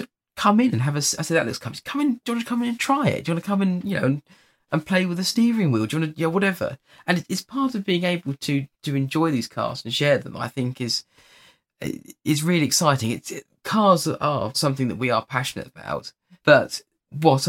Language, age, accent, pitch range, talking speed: English, 20-39, British, 110-150 Hz, 255 wpm